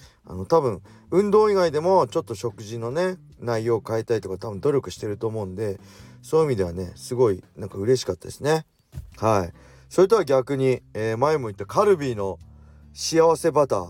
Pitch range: 95-130 Hz